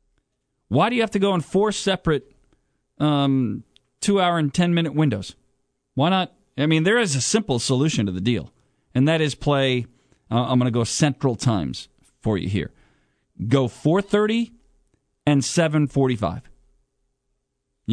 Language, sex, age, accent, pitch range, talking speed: English, male, 40-59, American, 125-180 Hz, 145 wpm